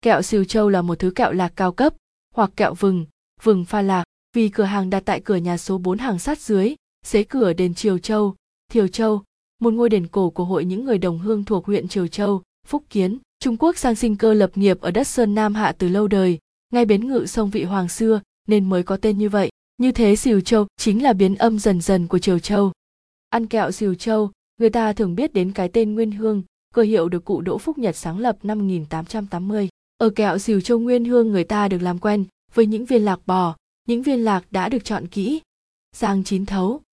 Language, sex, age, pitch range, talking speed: Vietnamese, female, 20-39, 185-225 Hz, 230 wpm